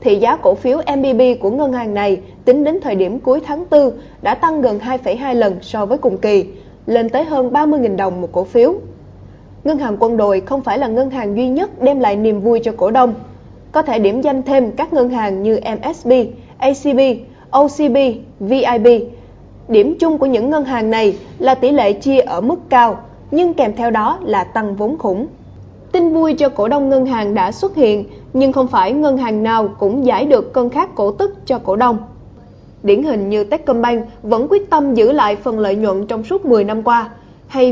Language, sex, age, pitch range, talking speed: Vietnamese, female, 20-39, 215-275 Hz, 205 wpm